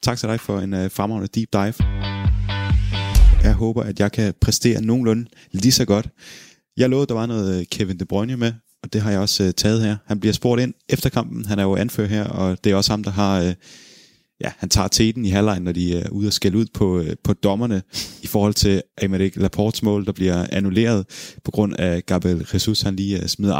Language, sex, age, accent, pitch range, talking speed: Danish, male, 20-39, native, 95-110 Hz, 225 wpm